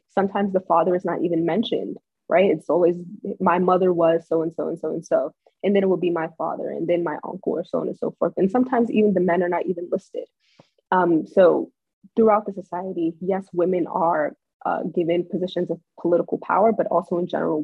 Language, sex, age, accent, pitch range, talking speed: English, female, 20-39, American, 165-195 Hz, 210 wpm